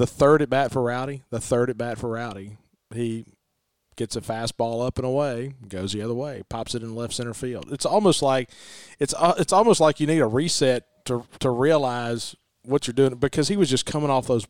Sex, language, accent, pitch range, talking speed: male, English, American, 115-140 Hz, 215 wpm